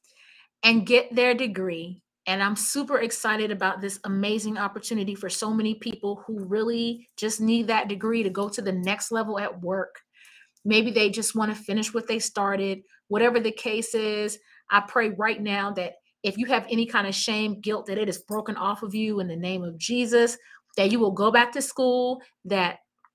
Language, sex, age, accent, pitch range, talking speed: English, female, 30-49, American, 205-235 Hz, 195 wpm